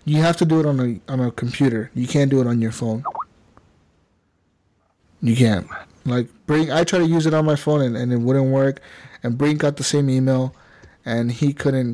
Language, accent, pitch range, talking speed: English, American, 120-150 Hz, 215 wpm